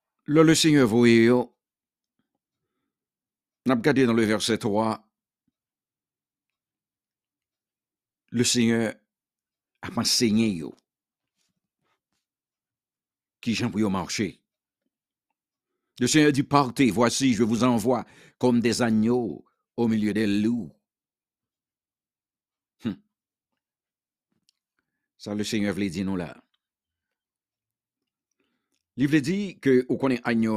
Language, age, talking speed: English, 60-79, 95 wpm